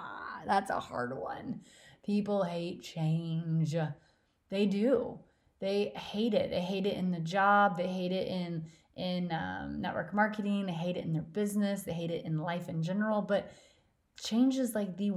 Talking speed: 175 wpm